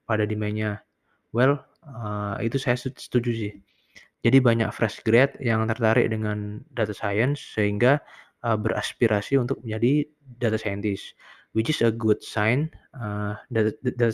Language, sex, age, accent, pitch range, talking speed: Indonesian, male, 20-39, native, 105-125 Hz, 125 wpm